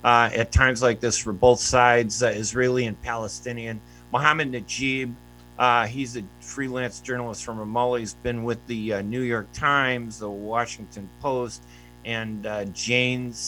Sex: male